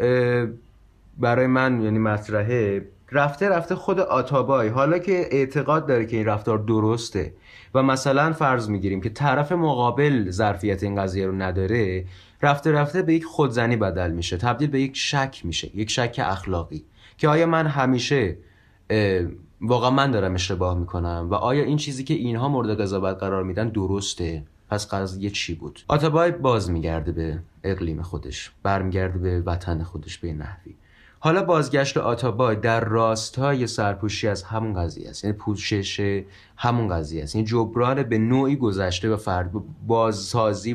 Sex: male